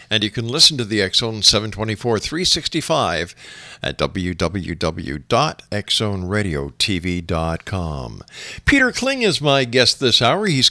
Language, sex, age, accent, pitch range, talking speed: English, male, 50-69, American, 105-145 Hz, 100 wpm